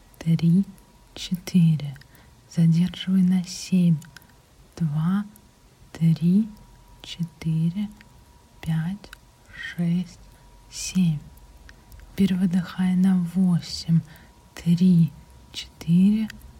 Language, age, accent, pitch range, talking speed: Russian, 30-49, native, 155-185 Hz, 60 wpm